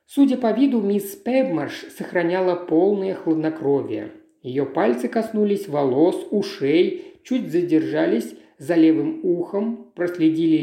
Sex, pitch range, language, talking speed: male, 160-255 Hz, Russian, 105 wpm